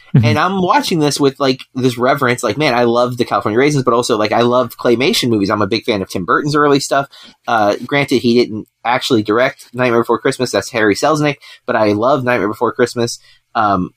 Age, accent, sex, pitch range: 30-49, American, male, 115-145 Hz